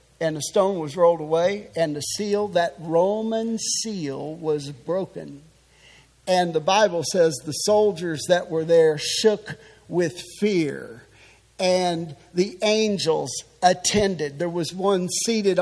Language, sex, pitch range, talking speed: English, male, 165-250 Hz, 130 wpm